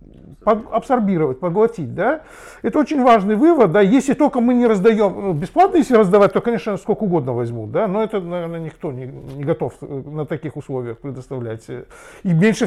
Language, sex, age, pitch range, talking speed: Russian, male, 50-69, 130-210 Hz, 165 wpm